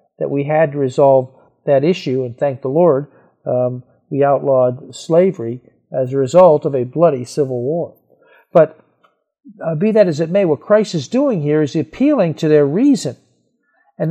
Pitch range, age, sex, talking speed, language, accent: 155-210 Hz, 50-69, male, 175 wpm, English, American